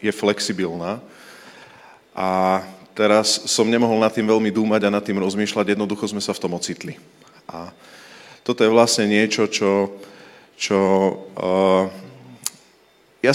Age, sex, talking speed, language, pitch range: 40-59, male, 130 wpm, Slovak, 95-115 Hz